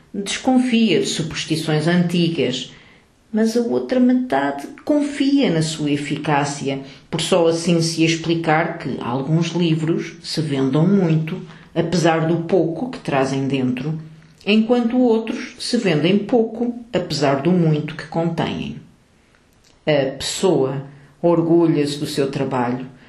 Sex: female